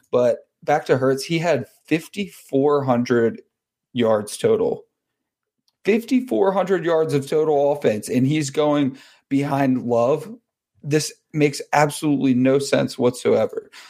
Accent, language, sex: American, English, male